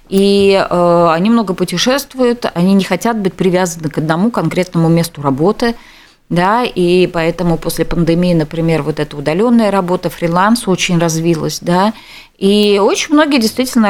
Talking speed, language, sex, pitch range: 140 wpm, Russian, female, 165-225 Hz